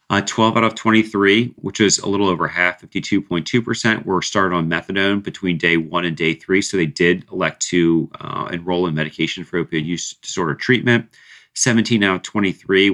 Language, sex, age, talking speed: English, male, 40-59, 185 wpm